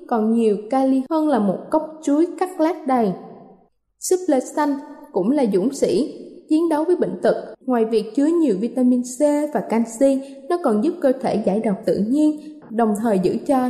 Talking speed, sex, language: 190 wpm, female, Vietnamese